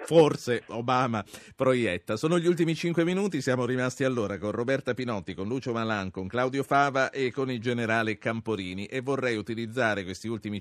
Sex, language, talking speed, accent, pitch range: male, Italian, 170 wpm, native, 95-120 Hz